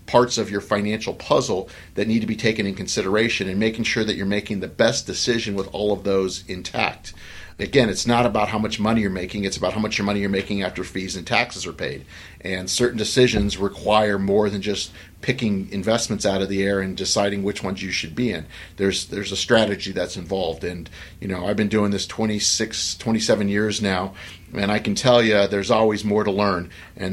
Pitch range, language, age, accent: 95-110 Hz, English, 40-59, American